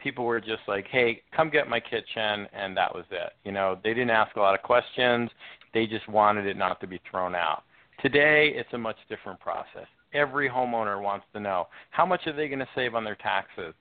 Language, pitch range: English, 100-120 Hz